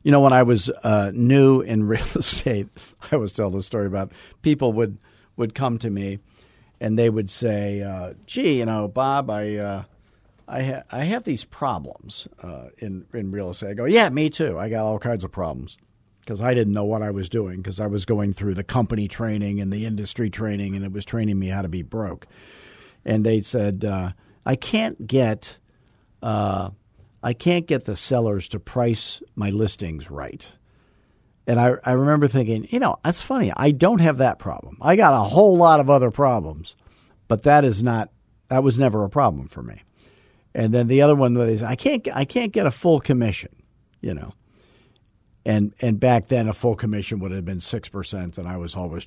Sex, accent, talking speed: male, American, 205 wpm